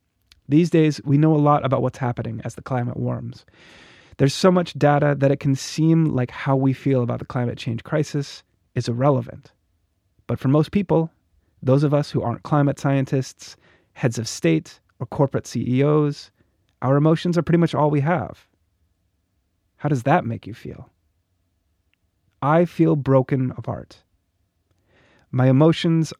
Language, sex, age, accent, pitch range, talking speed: English, male, 30-49, American, 110-145 Hz, 160 wpm